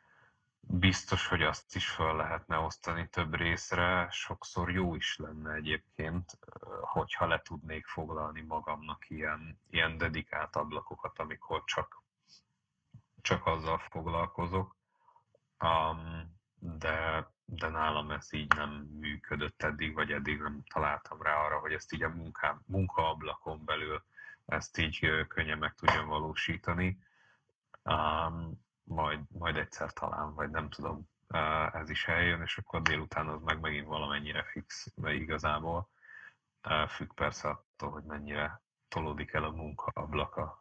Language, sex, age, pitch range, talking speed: Hungarian, male, 30-49, 75-90 Hz, 125 wpm